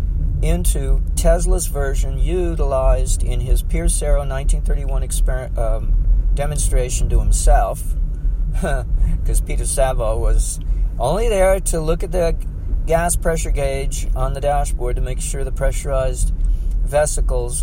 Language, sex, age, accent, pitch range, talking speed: English, male, 50-69, American, 80-120 Hz, 115 wpm